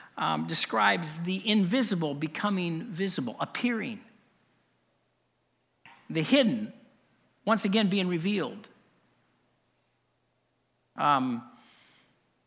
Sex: male